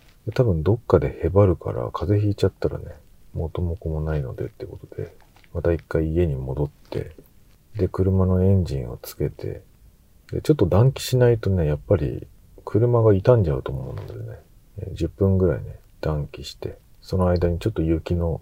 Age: 40-59